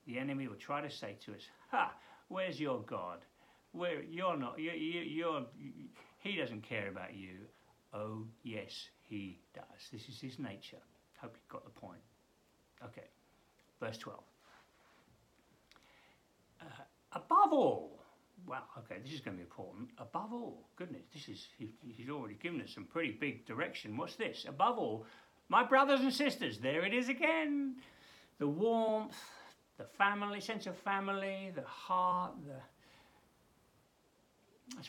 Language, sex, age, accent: English, male, 60-79, British